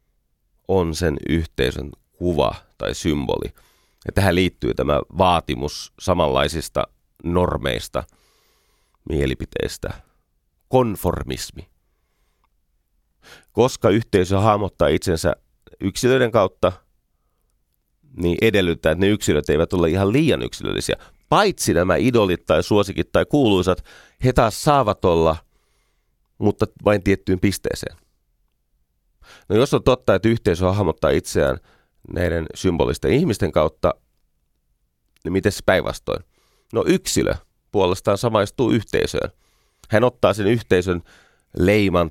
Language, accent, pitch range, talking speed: Finnish, native, 75-100 Hz, 100 wpm